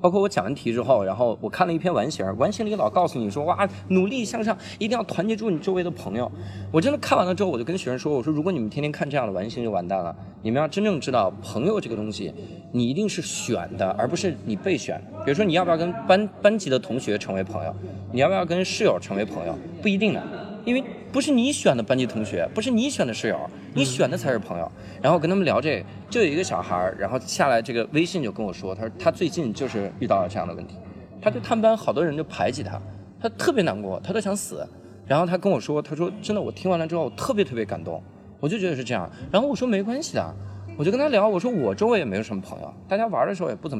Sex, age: male, 20-39